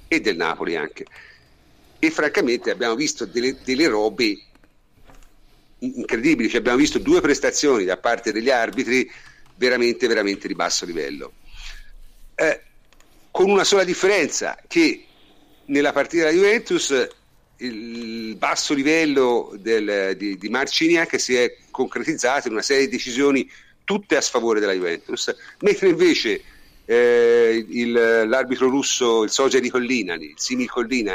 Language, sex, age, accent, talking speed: Italian, male, 50-69, native, 130 wpm